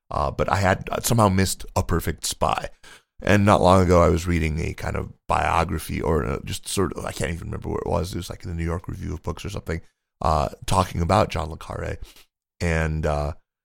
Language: English